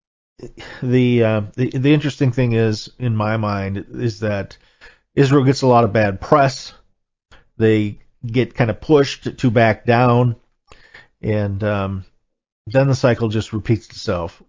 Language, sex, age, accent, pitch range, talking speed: English, male, 40-59, American, 100-125 Hz, 145 wpm